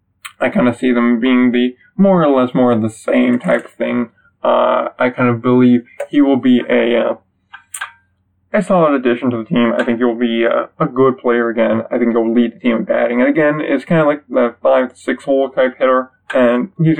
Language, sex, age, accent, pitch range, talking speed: English, male, 20-39, American, 120-145 Hz, 220 wpm